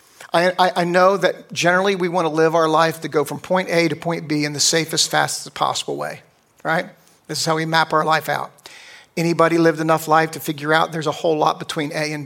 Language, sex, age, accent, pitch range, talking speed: English, male, 50-69, American, 155-185 Hz, 235 wpm